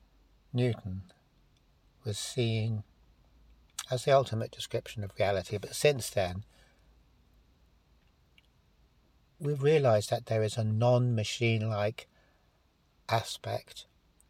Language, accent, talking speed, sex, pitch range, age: English, British, 85 wpm, male, 95-120 Hz, 60-79